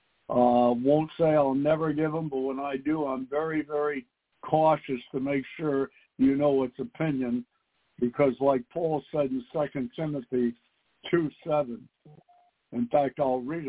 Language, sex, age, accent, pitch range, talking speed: English, male, 60-79, American, 130-155 Hz, 150 wpm